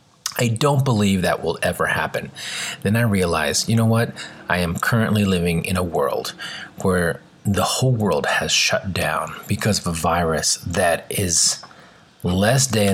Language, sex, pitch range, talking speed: English, male, 95-130 Hz, 160 wpm